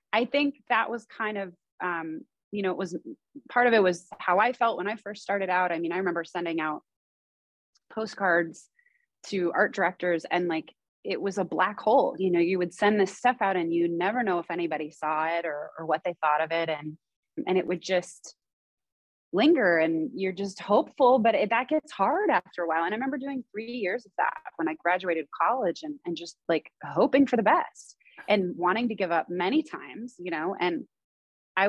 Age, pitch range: 20-39, 170-220 Hz